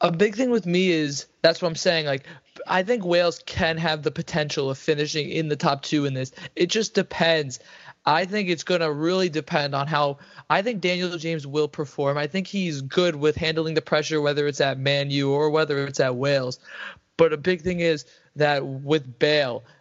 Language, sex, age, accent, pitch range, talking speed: English, male, 20-39, American, 140-165 Hz, 220 wpm